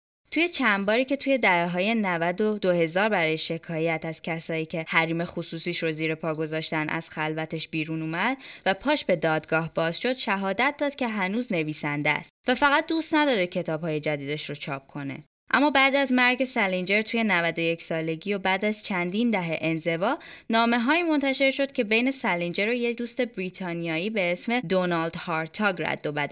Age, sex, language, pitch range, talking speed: 20-39, female, Persian, 165-230 Hz, 170 wpm